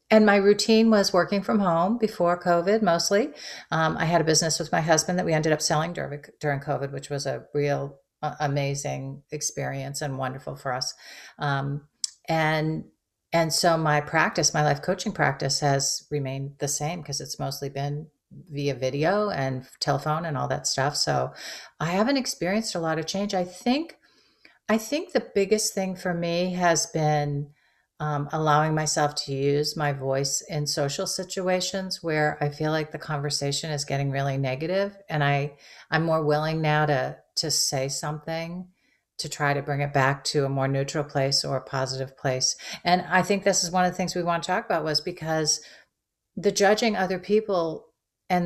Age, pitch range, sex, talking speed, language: 40-59, 145-180 Hz, female, 185 wpm, English